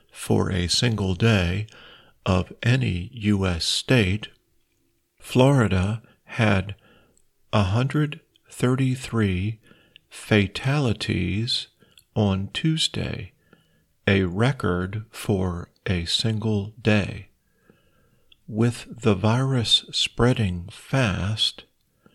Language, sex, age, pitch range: Thai, male, 50-69, 100-120 Hz